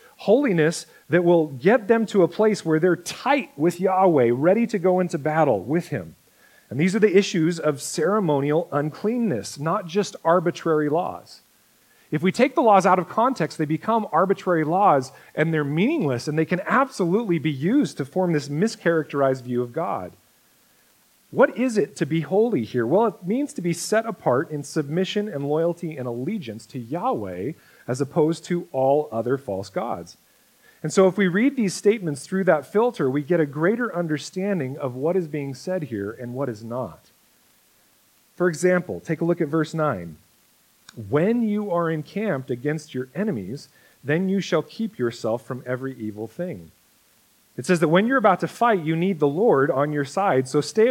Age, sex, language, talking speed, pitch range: 40-59, male, English, 185 wpm, 145-195 Hz